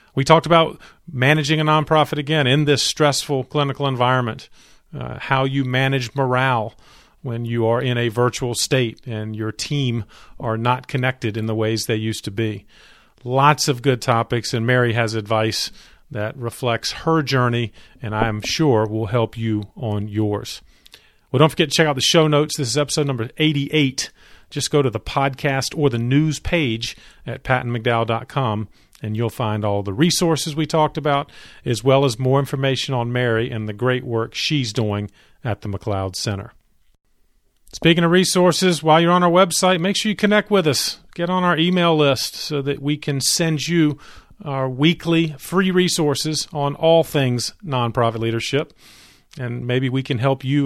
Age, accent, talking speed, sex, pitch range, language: 40-59, American, 175 wpm, male, 115-155 Hz, English